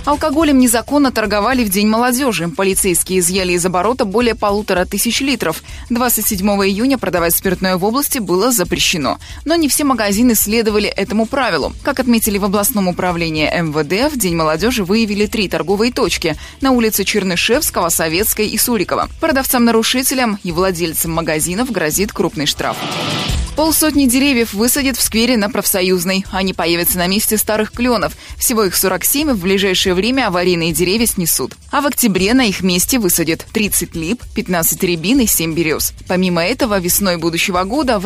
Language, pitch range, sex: Russian, 180-240 Hz, female